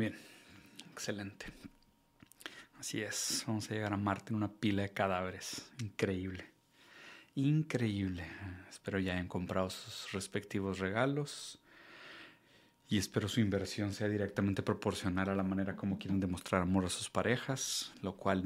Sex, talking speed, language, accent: male, 135 wpm, Spanish, Mexican